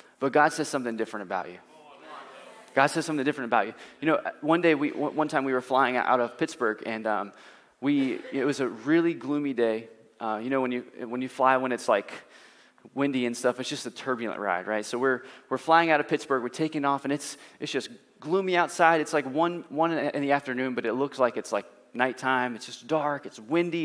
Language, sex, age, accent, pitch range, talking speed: English, male, 20-39, American, 130-165 Hz, 225 wpm